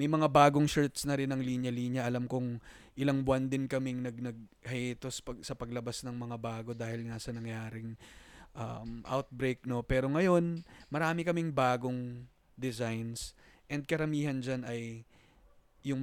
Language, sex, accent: Filipino, male, native